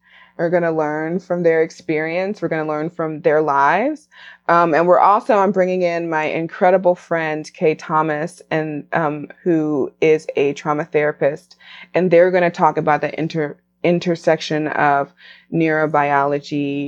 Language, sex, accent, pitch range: English, female, American, 150-180 Hz